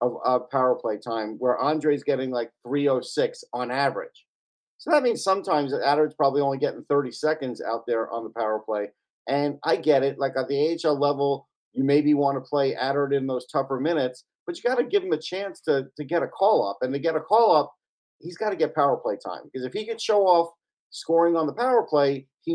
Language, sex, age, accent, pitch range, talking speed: English, male, 50-69, American, 130-165 Hz, 225 wpm